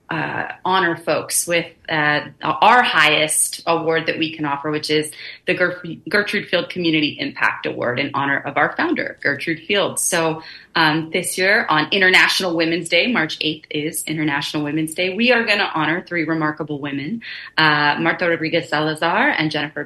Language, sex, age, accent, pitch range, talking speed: English, female, 30-49, American, 145-180 Hz, 165 wpm